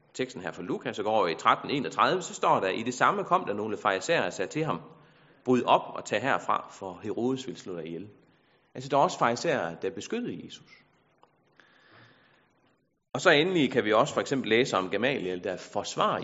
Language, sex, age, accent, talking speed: Danish, male, 30-49, native, 205 wpm